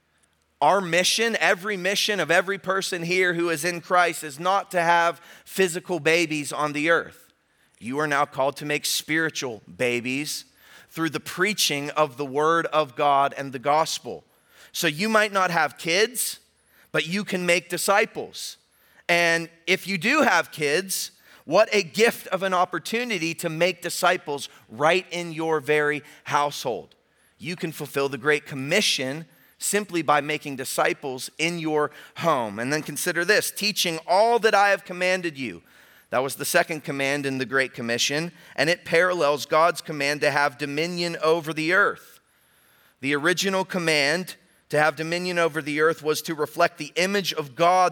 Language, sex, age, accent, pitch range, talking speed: English, male, 30-49, American, 150-185 Hz, 165 wpm